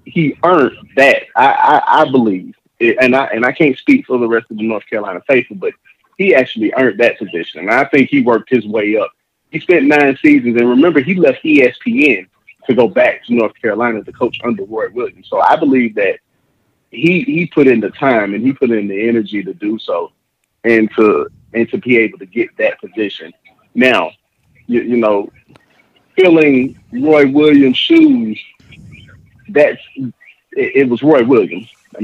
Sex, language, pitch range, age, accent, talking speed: male, English, 115-160 Hz, 30-49, American, 185 wpm